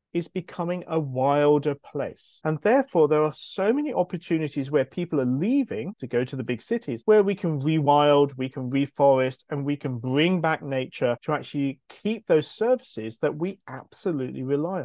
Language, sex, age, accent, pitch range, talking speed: English, male, 40-59, British, 140-185 Hz, 180 wpm